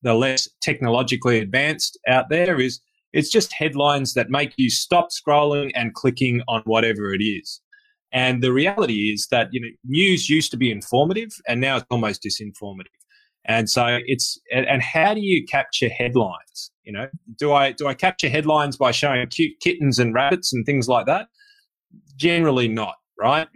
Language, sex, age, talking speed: English, male, 20-39, 175 wpm